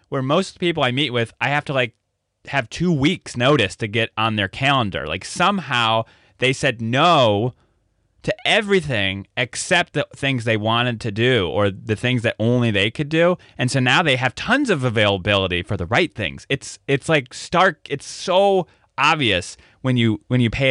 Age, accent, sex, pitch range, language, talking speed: 20-39, American, male, 100-140 Hz, English, 190 wpm